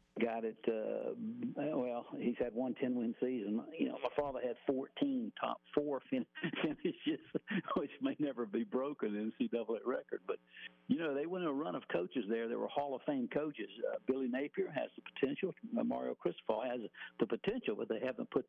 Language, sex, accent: English, male, American